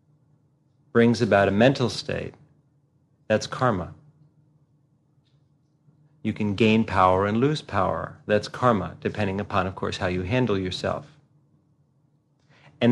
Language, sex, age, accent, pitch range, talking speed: English, male, 40-59, American, 100-145 Hz, 115 wpm